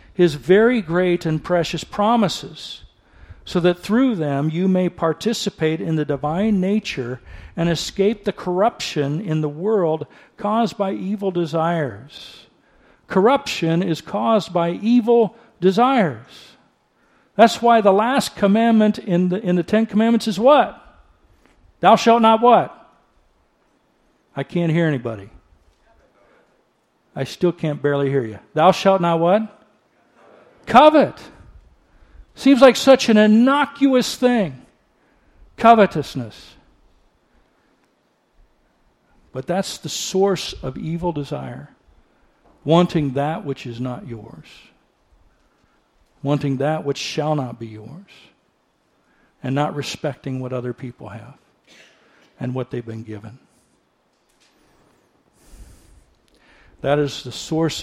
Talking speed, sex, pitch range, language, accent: 115 wpm, male, 145-215 Hz, English, American